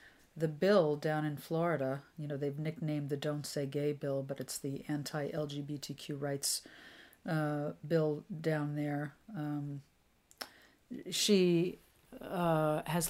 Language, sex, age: English, female, 40-59